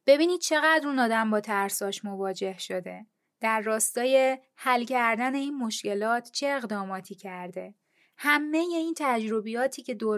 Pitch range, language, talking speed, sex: 205-265 Hz, Persian, 135 wpm, female